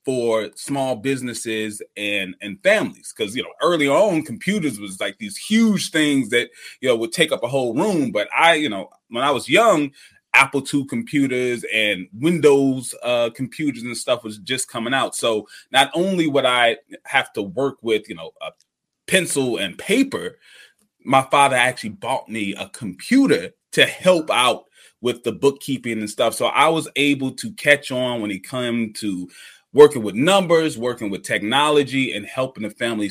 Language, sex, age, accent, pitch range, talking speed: English, male, 20-39, American, 110-145 Hz, 180 wpm